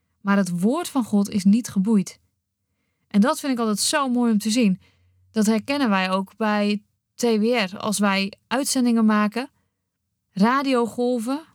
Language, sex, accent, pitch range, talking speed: Dutch, female, Dutch, 180-255 Hz, 150 wpm